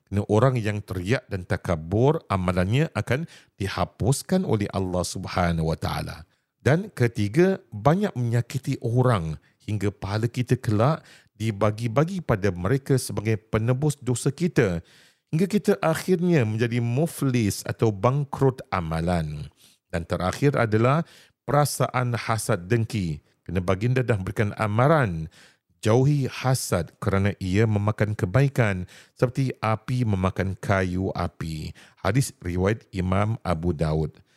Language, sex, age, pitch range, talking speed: Malay, male, 40-59, 95-130 Hz, 110 wpm